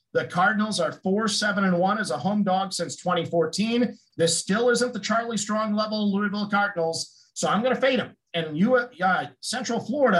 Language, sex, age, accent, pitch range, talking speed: English, male, 50-69, American, 175-215 Hz, 180 wpm